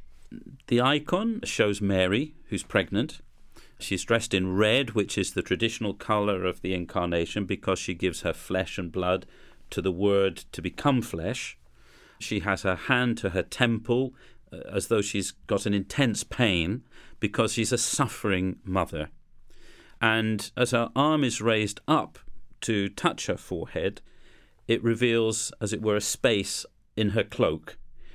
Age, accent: 40-59, British